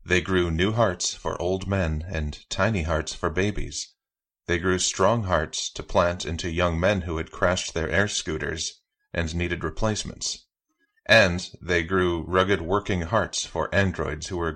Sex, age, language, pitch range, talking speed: male, 30-49, English, 80-100 Hz, 165 wpm